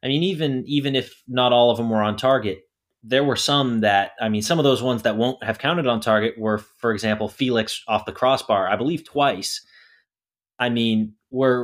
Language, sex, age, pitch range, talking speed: English, male, 30-49, 100-125 Hz, 210 wpm